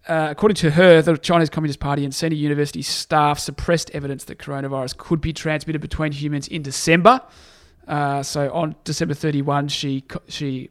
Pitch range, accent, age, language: 140-160 Hz, Australian, 30-49, English